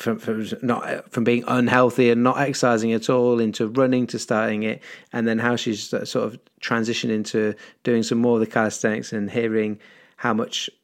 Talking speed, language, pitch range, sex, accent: 190 wpm, English, 105-120 Hz, male, British